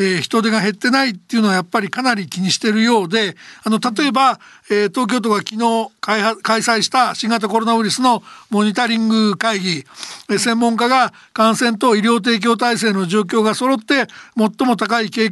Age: 60-79